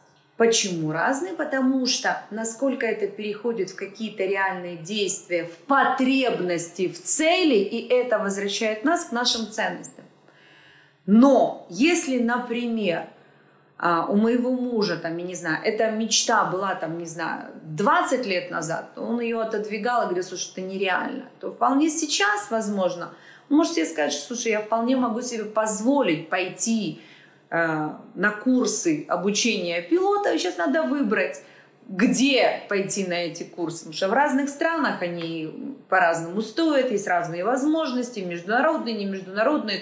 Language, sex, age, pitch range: Russian, female, 30-49, 185-265 Hz